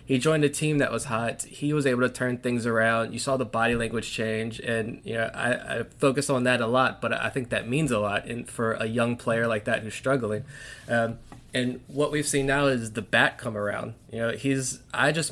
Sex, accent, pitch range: male, American, 115-130 Hz